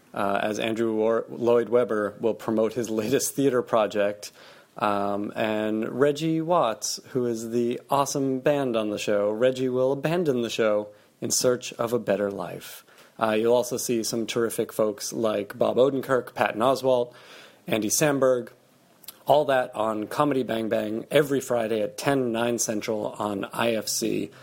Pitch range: 110-130 Hz